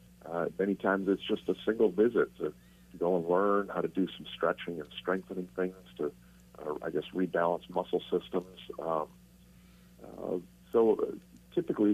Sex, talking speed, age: male, 160 wpm, 50-69